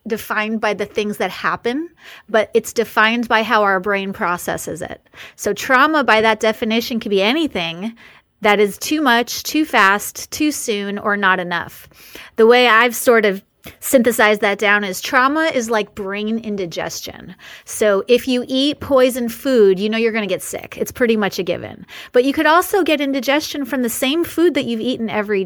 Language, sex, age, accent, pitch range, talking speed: English, female, 30-49, American, 205-265 Hz, 190 wpm